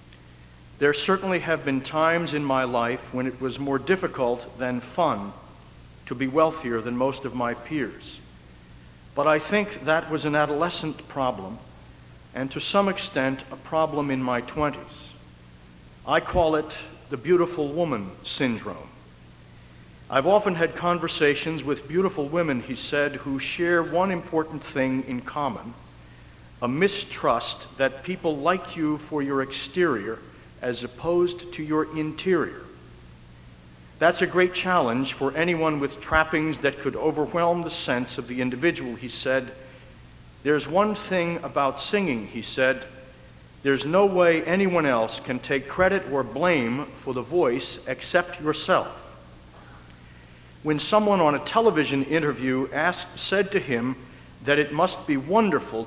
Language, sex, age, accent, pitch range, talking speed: English, male, 60-79, American, 120-170 Hz, 140 wpm